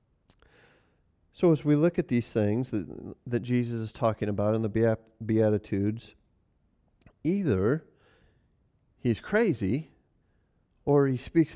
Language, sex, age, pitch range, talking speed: English, male, 40-59, 125-160 Hz, 115 wpm